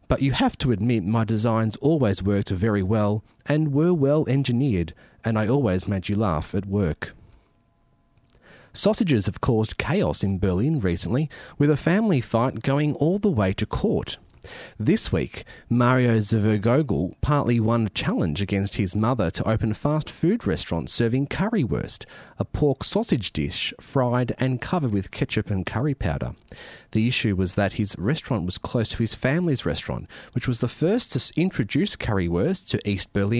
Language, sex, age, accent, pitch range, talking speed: English, male, 30-49, Australian, 100-130 Hz, 165 wpm